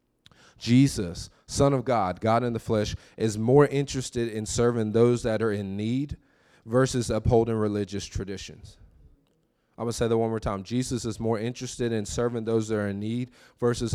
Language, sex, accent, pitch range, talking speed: English, male, American, 110-130 Hz, 175 wpm